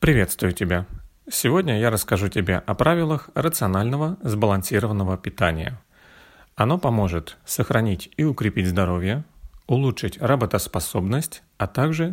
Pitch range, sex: 95-130 Hz, male